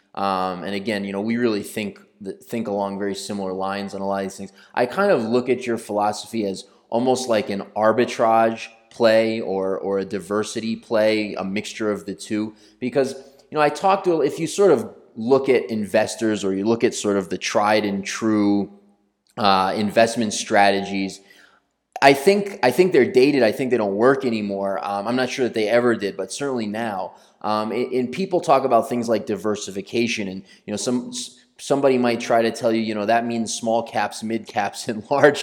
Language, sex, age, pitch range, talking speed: English, male, 20-39, 100-120 Hz, 205 wpm